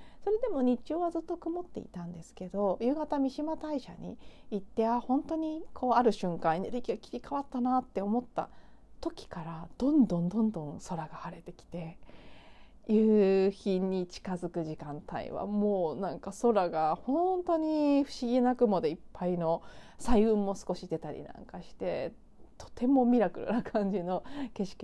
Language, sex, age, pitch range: Japanese, female, 40-59, 180-255 Hz